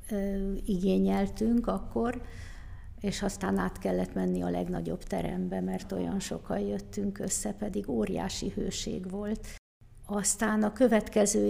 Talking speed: 115 wpm